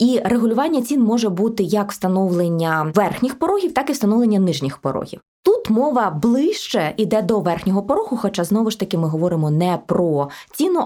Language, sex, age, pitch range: Ukrainian, female, 20-39, 170-235 Hz